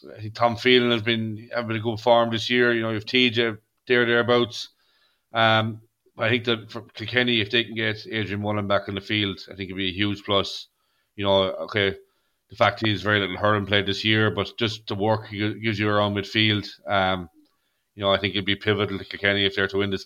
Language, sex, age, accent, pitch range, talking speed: English, male, 30-49, Irish, 100-115 Hz, 240 wpm